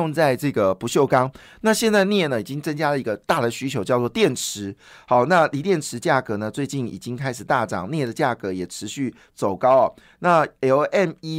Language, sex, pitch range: Chinese, male, 120-160 Hz